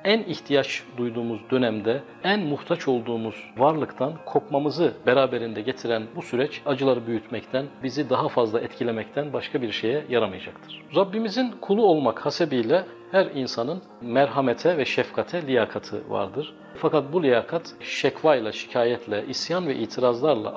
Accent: native